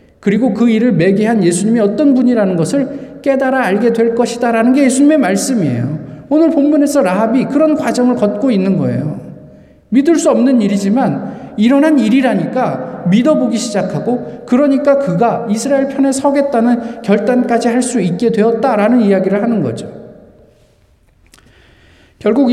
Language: Korean